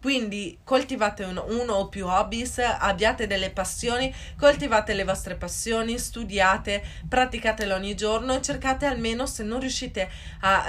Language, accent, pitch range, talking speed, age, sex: Italian, native, 185-245 Hz, 140 wpm, 20-39, female